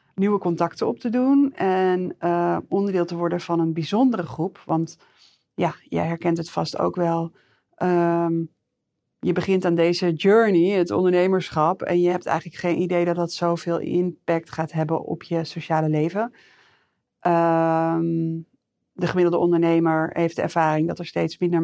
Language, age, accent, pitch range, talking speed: Dutch, 40-59, Dutch, 165-180 Hz, 155 wpm